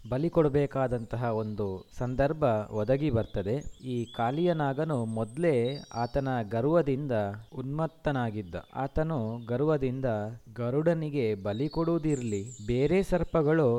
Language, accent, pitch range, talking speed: Kannada, native, 115-150 Hz, 85 wpm